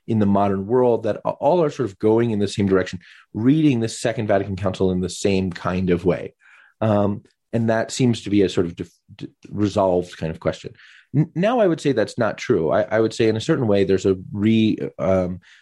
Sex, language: male, English